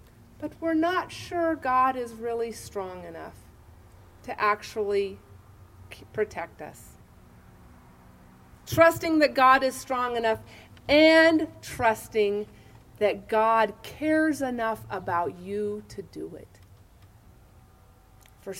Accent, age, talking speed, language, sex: American, 40-59, 100 wpm, English, female